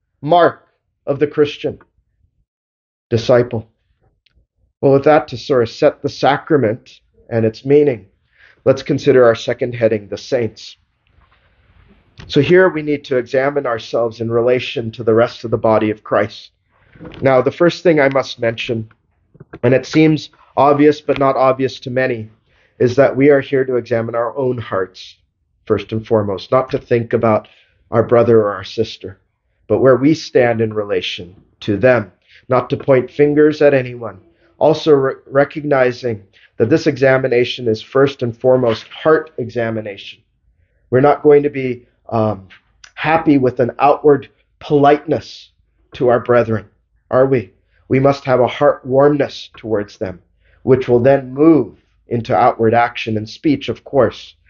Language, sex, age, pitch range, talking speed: English, male, 40-59, 110-140 Hz, 155 wpm